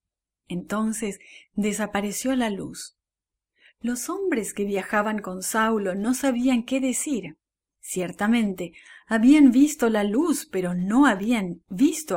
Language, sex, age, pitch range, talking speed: English, female, 40-59, 190-260 Hz, 115 wpm